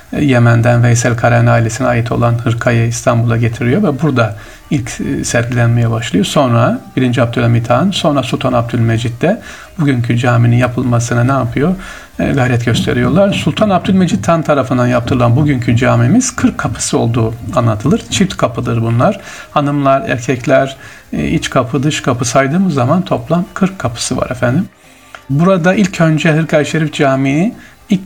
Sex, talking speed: male, 135 wpm